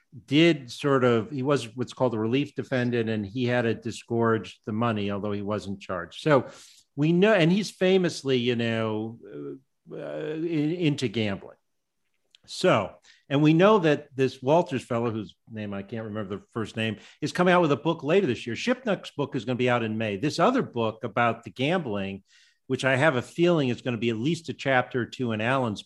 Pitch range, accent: 110-140 Hz, American